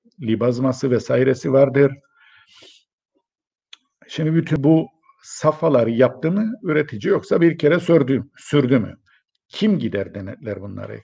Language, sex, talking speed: Turkish, male, 110 wpm